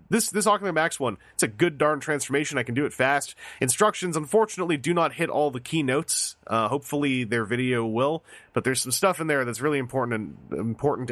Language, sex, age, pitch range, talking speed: English, male, 30-49, 120-170 Hz, 210 wpm